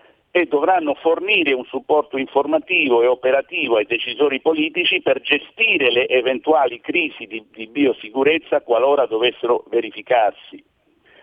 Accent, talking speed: native, 120 wpm